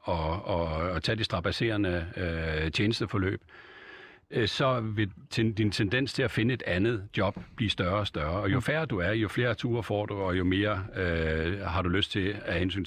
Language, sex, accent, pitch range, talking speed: Danish, male, native, 90-120 Hz, 205 wpm